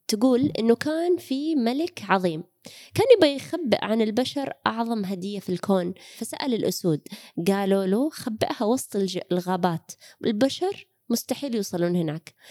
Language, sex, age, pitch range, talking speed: Arabic, female, 20-39, 185-250 Hz, 125 wpm